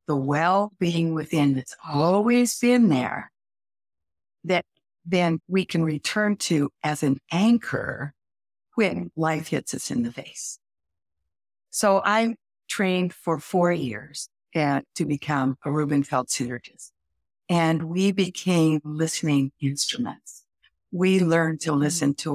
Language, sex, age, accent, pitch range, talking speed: English, female, 60-79, American, 135-185 Hz, 120 wpm